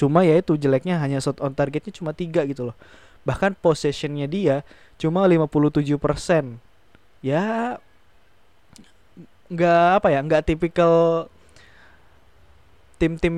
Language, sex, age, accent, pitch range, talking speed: English, male, 20-39, Indonesian, 130-155 Hz, 110 wpm